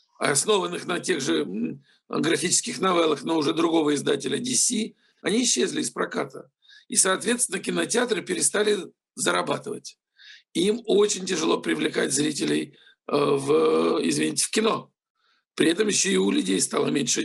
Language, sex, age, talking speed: Russian, male, 50-69, 125 wpm